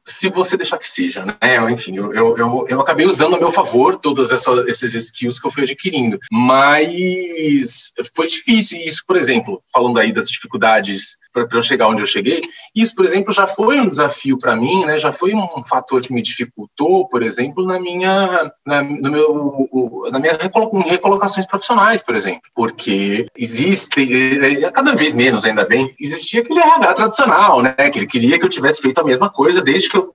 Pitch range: 125-200 Hz